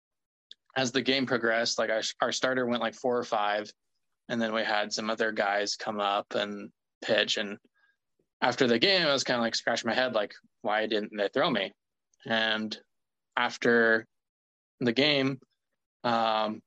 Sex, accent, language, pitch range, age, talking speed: male, American, English, 110-125 Hz, 20-39, 170 wpm